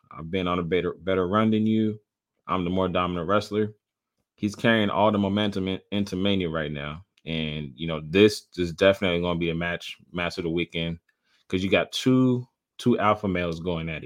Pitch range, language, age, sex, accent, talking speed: 90-105 Hz, English, 20-39, male, American, 205 wpm